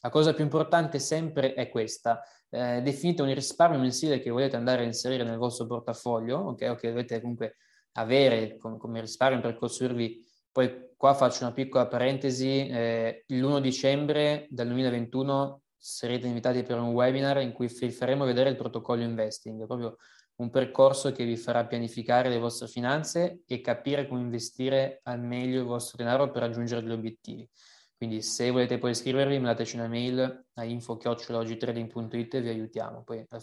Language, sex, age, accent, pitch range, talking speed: Italian, male, 20-39, native, 115-135 Hz, 170 wpm